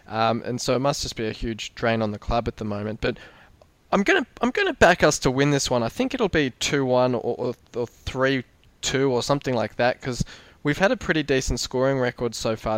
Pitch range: 115-130 Hz